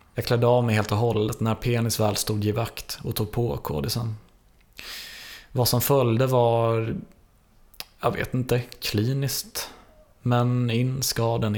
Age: 20-39